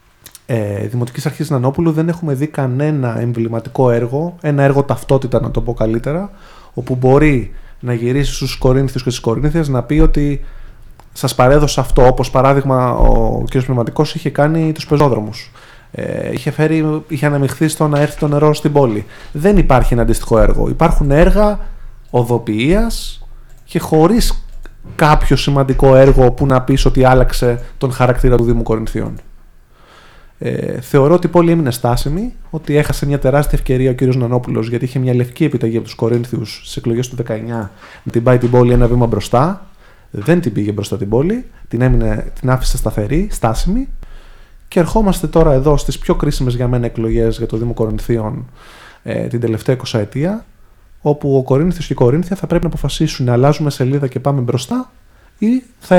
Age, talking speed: 30-49, 170 wpm